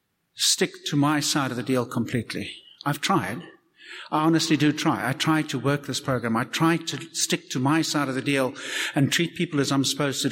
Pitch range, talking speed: 135-170 Hz, 215 wpm